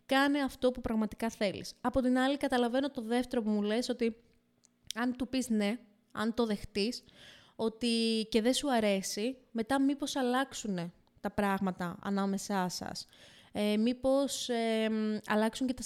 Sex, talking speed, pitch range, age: female, 150 wpm, 205-250 Hz, 20-39